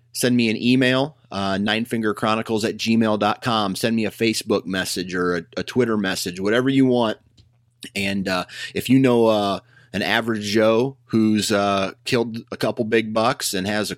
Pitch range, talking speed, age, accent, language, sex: 100-120 Hz, 170 wpm, 30-49, American, English, male